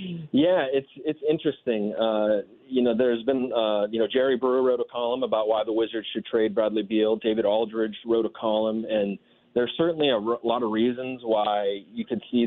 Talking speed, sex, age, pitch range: 195 wpm, male, 30-49, 110-130 Hz